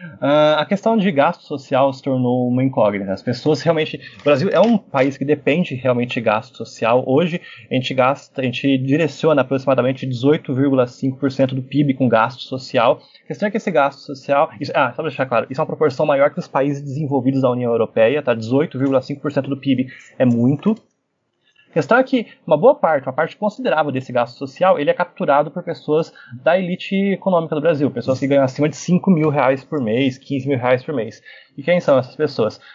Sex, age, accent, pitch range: male, 20-39, Brazilian, 130-155 Hz